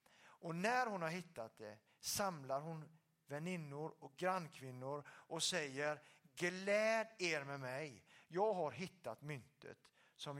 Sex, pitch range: male, 130-170 Hz